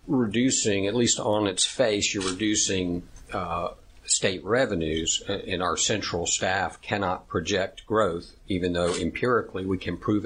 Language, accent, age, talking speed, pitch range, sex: English, American, 50-69, 140 wpm, 90-115 Hz, male